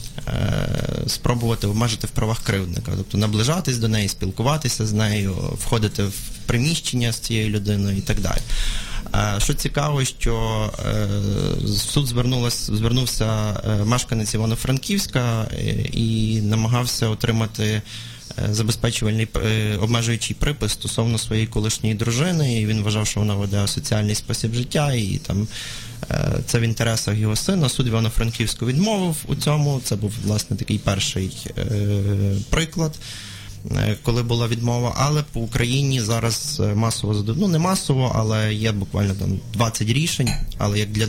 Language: Ukrainian